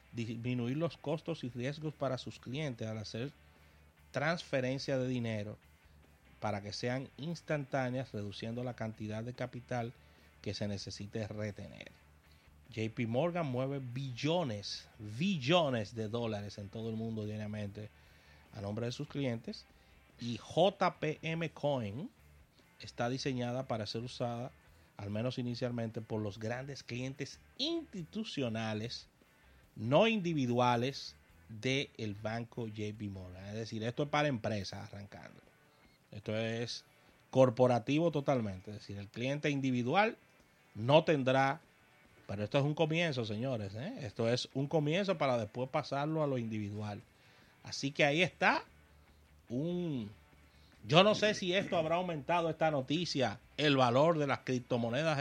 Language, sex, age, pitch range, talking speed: Spanish, male, 30-49, 105-145 Hz, 130 wpm